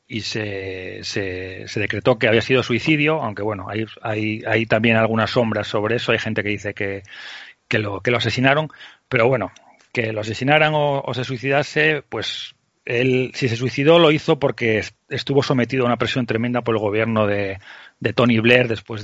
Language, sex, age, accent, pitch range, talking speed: Spanish, male, 40-59, Spanish, 115-140 Hz, 190 wpm